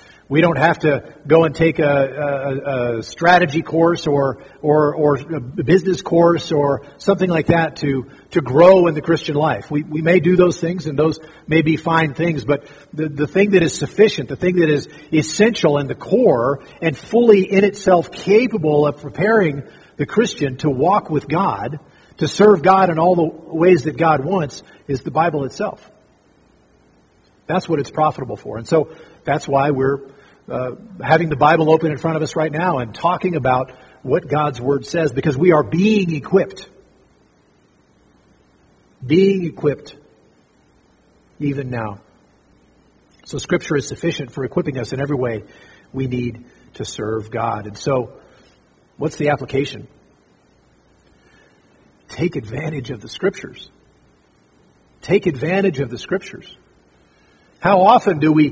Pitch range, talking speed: 140-170 Hz, 160 wpm